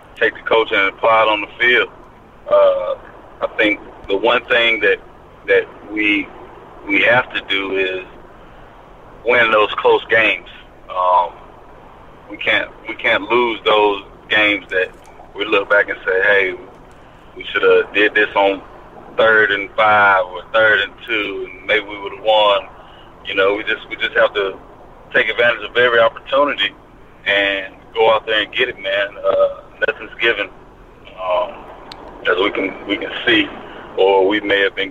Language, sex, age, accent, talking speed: English, male, 30-49, American, 165 wpm